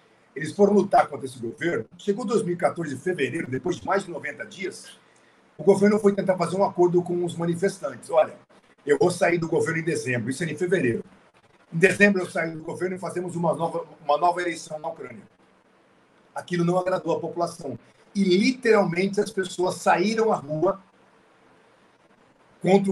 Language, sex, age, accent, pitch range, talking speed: Portuguese, male, 50-69, Brazilian, 155-195 Hz, 175 wpm